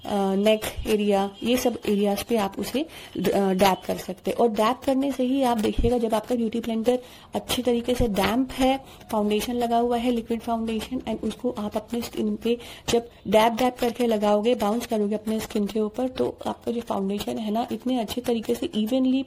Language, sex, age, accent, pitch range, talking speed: Hindi, female, 30-49, native, 210-255 Hz, 195 wpm